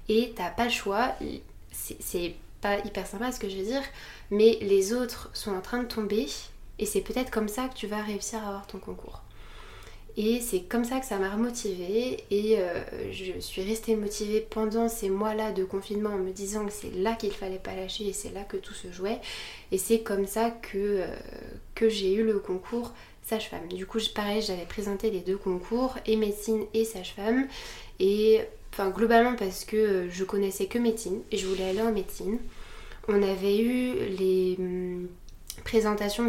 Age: 20-39